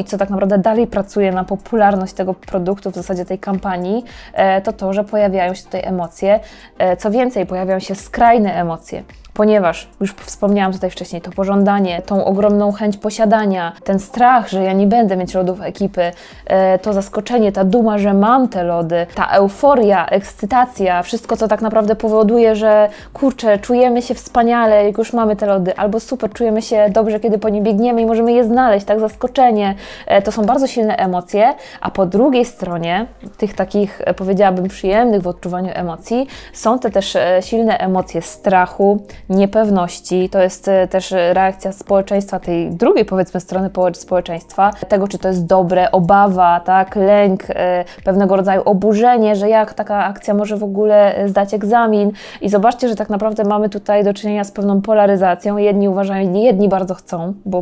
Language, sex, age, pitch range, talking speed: Polish, female, 20-39, 190-220 Hz, 165 wpm